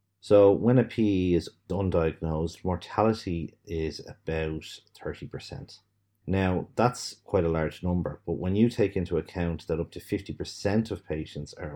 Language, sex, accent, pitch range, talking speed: English, male, Irish, 80-100 Hz, 150 wpm